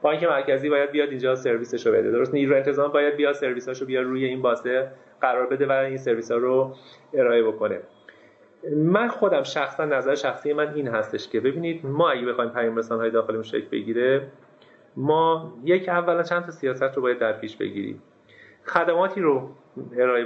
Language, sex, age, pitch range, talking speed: Persian, male, 30-49, 125-175 Hz, 185 wpm